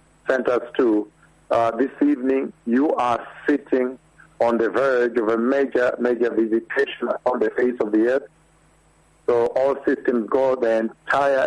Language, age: English, 50-69